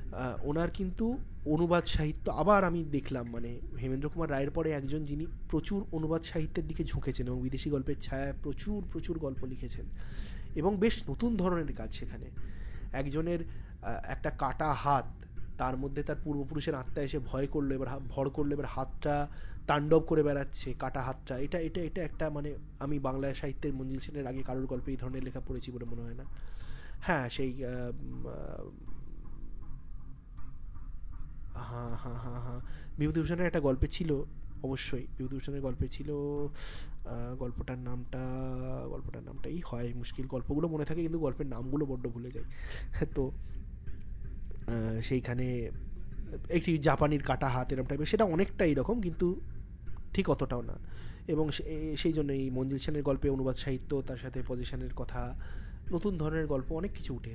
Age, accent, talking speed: 30-49, native, 145 wpm